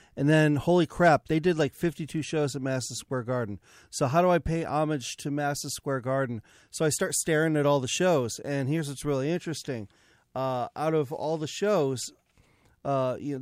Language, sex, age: English, male, 40-59